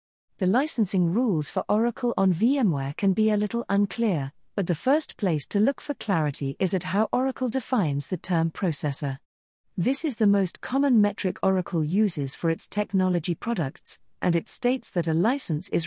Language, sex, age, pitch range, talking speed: English, female, 40-59, 160-215 Hz, 180 wpm